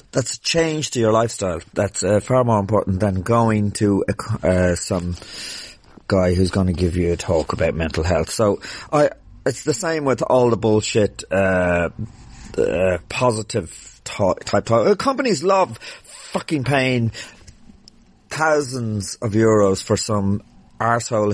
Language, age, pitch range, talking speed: English, 30-49, 100-145 Hz, 150 wpm